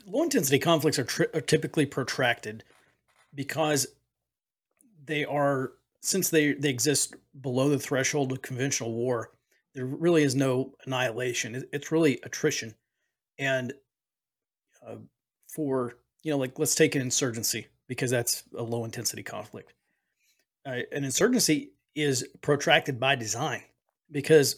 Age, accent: 40-59, American